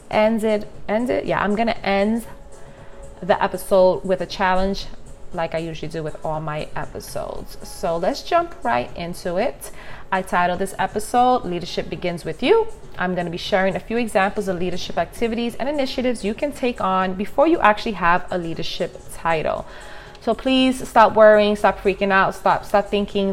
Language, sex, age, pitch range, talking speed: English, female, 30-49, 170-200 Hz, 175 wpm